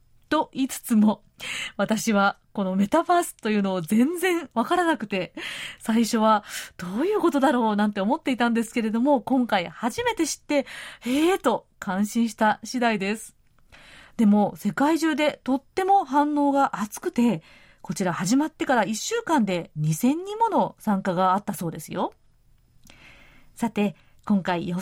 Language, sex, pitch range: Japanese, female, 205-300 Hz